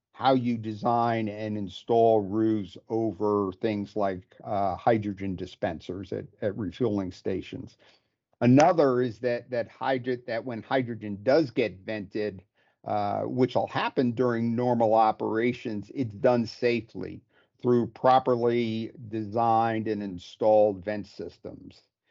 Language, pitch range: English, 110-125 Hz